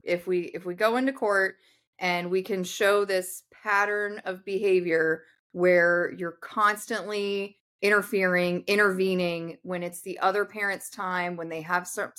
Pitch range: 180-225 Hz